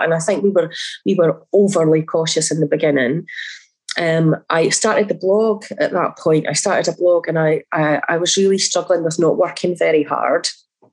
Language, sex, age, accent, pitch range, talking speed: English, female, 30-49, British, 160-195 Hz, 200 wpm